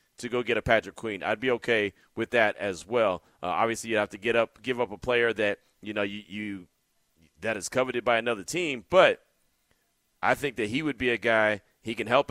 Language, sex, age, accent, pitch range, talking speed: English, male, 30-49, American, 110-135 Hz, 230 wpm